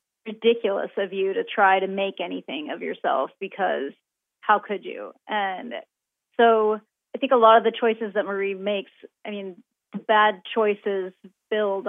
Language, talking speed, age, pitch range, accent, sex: English, 155 wpm, 30-49, 195-230 Hz, American, female